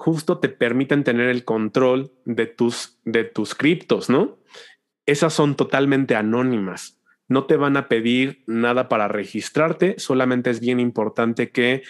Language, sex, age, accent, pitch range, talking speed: Spanish, male, 30-49, Mexican, 115-135 Hz, 145 wpm